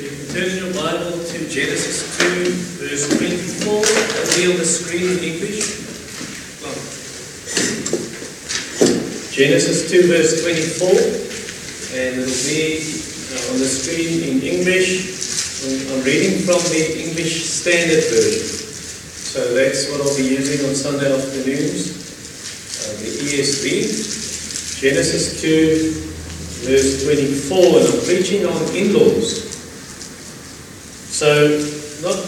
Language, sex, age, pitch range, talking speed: English, male, 40-59, 135-185 Hz, 110 wpm